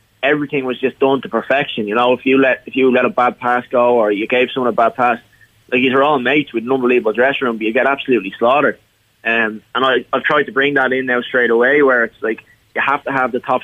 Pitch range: 115-130 Hz